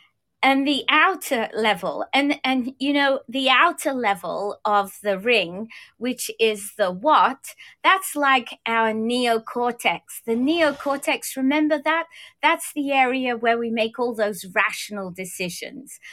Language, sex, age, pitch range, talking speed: English, female, 30-49, 230-305 Hz, 135 wpm